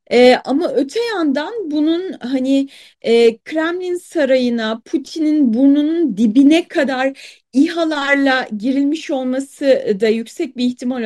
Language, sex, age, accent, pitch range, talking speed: Turkish, female, 30-49, native, 260-355 Hz, 110 wpm